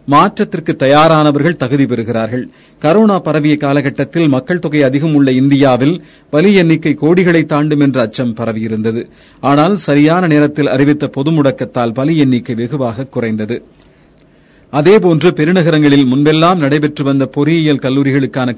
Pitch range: 130-160 Hz